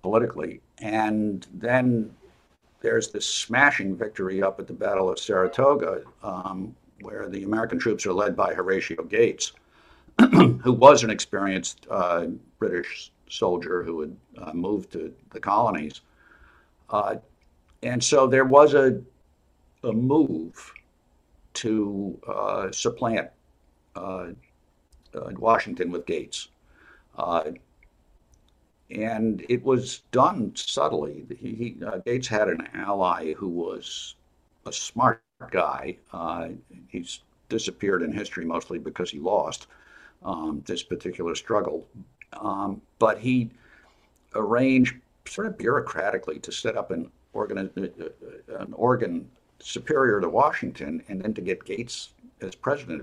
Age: 60-79